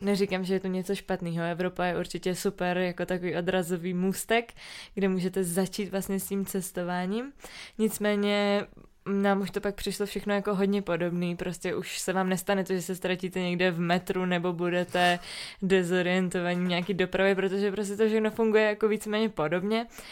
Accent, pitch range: native, 180-200 Hz